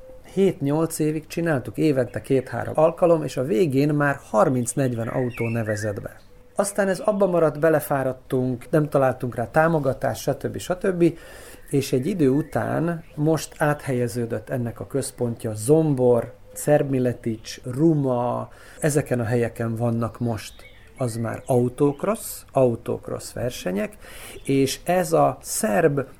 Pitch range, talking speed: 120-145 Hz, 110 wpm